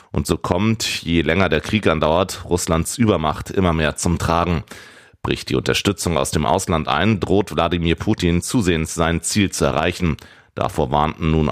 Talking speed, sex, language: 165 wpm, male, German